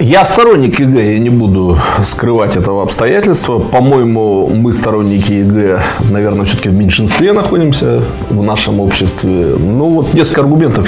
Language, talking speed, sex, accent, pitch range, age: Russian, 140 wpm, male, native, 100-135 Hz, 20-39